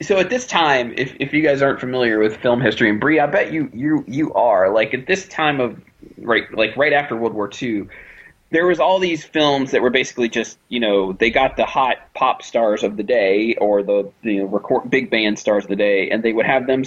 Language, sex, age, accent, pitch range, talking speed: English, male, 30-49, American, 110-135 Hz, 245 wpm